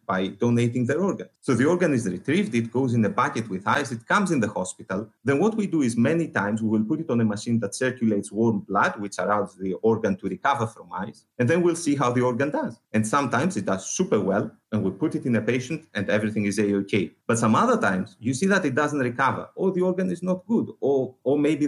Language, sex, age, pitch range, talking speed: English, male, 30-49, 110-160 Hz, 250 wpm